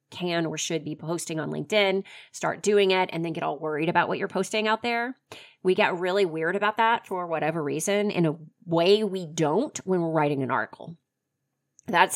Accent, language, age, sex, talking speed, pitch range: American, English, 30-49, female, 200 wpm, 155-225 Hz